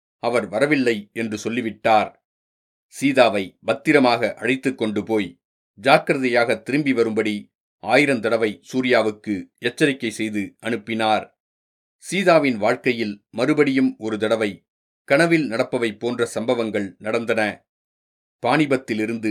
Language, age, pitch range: Tamil, 40-59, 110-135 Hz